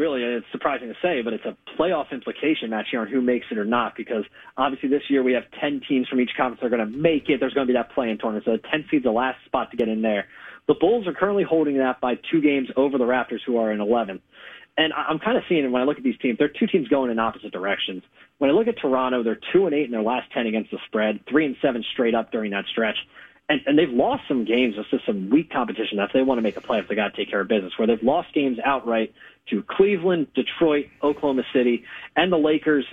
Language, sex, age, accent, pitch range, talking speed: English, male, 30-49, American, 115-150 Hz, 270 wpm